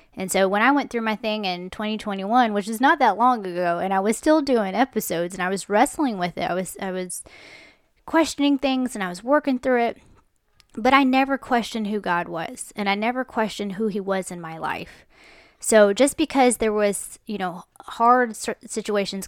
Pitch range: 190-250 Hz